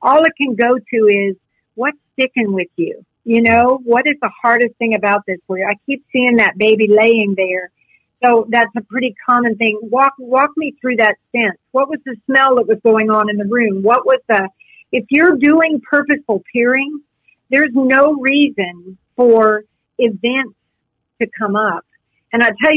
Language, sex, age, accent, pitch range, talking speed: English, female, 50-69, American, 215-260 Hz, 185 wpm